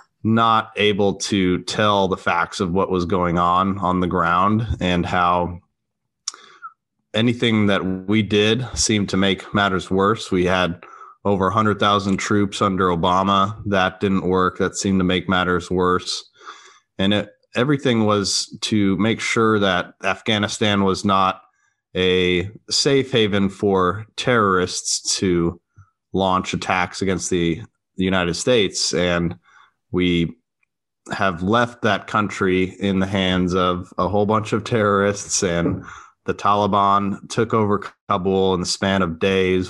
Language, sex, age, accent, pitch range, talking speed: English, male, 30-49, American, 90-105 Hz, 140 wpm